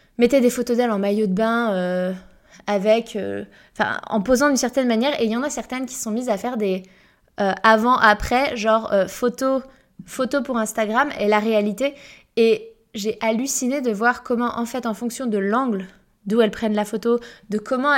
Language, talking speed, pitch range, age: French, 195 wpm, 200-240 Hz, 20-39